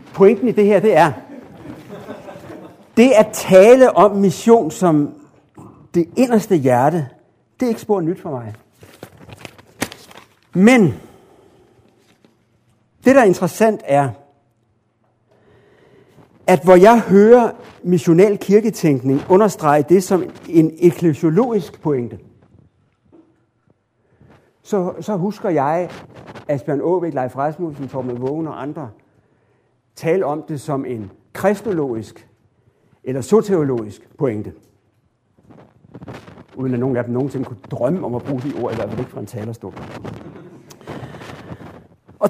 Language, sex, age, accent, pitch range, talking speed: Danish, male, 60-79, native, 125-190 Hz, 115 wpm